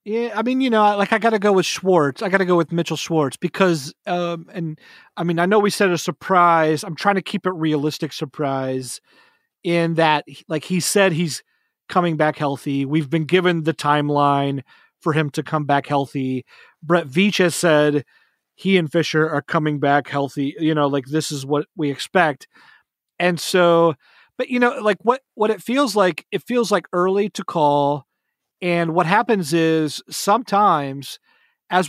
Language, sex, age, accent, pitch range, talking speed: English, male, 30-49, American, 155-195 Hz, 185 wpm